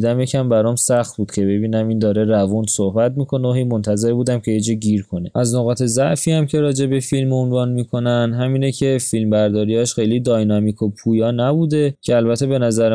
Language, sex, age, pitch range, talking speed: Persian, male, 20-39, 110-130 Hz, 185 wpm